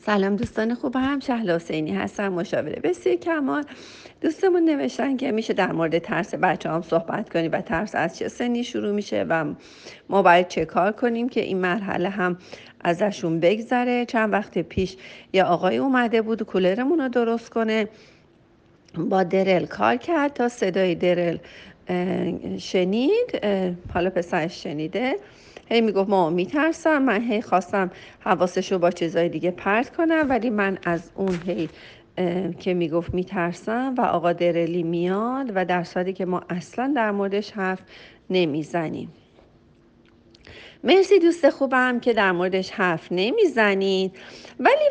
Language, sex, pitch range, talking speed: Persian, female, 180-245 Hz, 140 wpm